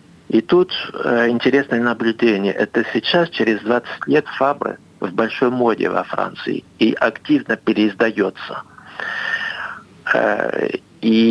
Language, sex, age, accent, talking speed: Russian, male, 50-69, native, 100 wpm